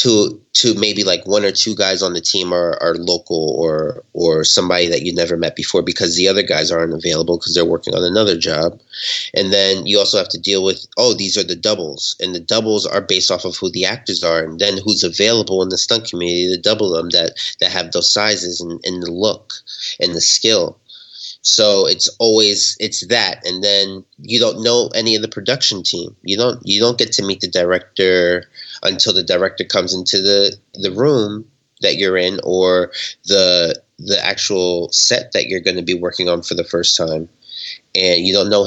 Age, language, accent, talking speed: 30-49, English, American, 210 wpm